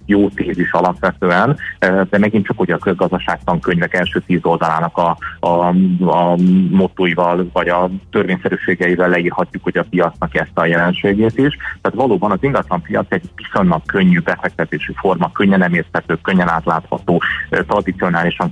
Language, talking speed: Hungarian, 135 wpm